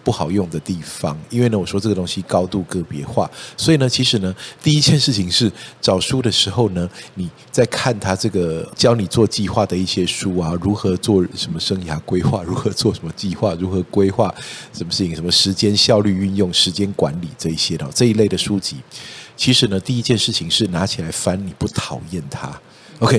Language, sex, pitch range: Chinese, male, 95-125 Hz